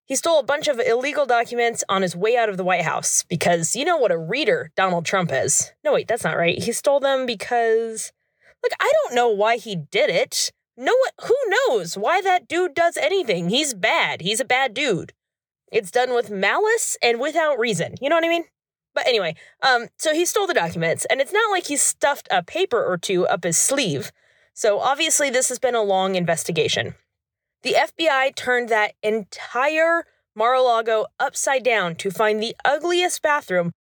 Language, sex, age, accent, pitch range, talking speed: English, female, 20-39, American, 215-340 Hz, 195 wpm